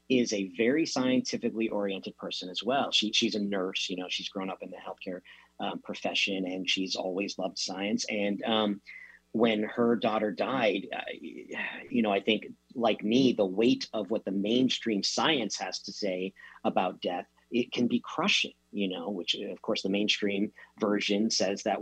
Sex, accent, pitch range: male, American, 100-115 Hz